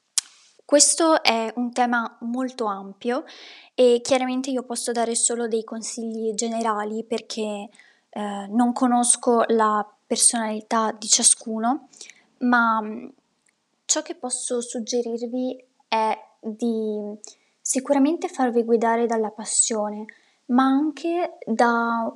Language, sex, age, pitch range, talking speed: Italian, female, 20-39, 225-260 Hz, 100 wpm